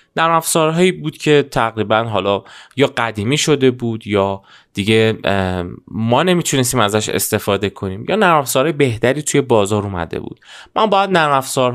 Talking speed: 145 wpm